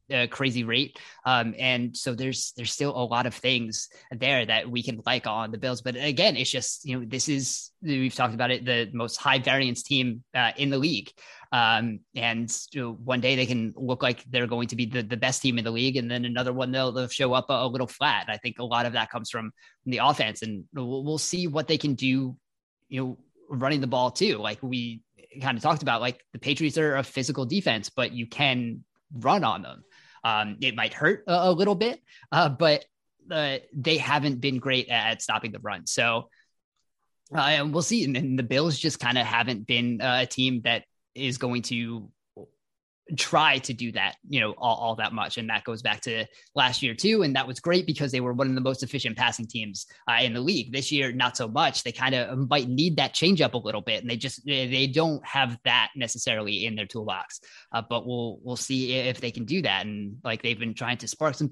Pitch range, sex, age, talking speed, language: 120-135 Hz, male, 20-39, 235 wpm, English